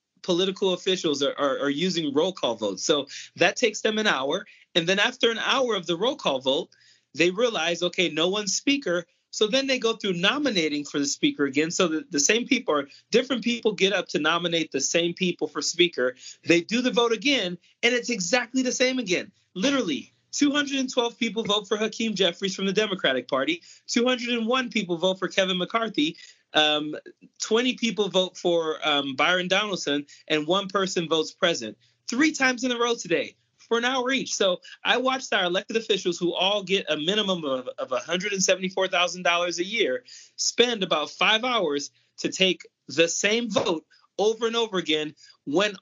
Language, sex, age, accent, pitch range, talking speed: English, male, 30-49, American, 170-235 Hz, 180 wpm